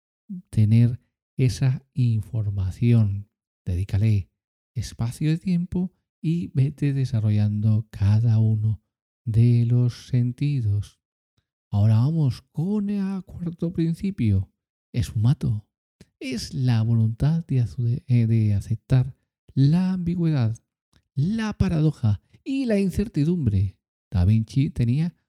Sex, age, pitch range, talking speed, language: male, 50-69, 110-160 Hz, 95 wpm, Spanish